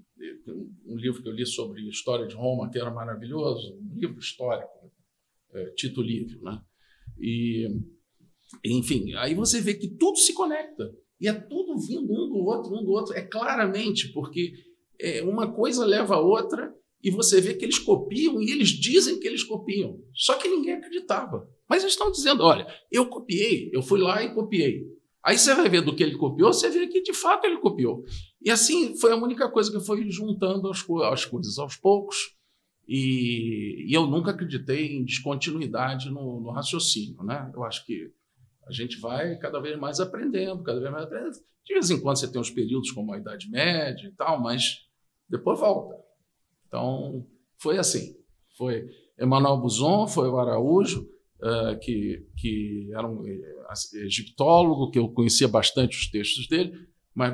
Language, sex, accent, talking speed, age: Portuguese, male, Brazilian, 175 wpm, 50-69